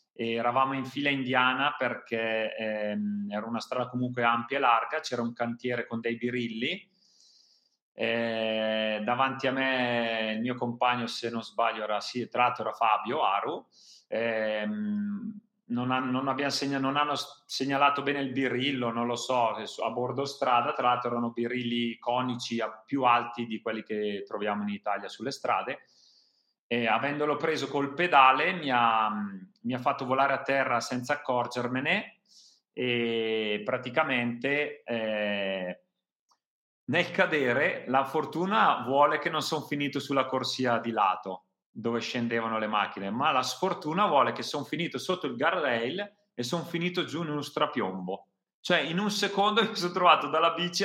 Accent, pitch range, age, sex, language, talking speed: native, 115-145 Hz, 30-49, male, Italian, 150 wpm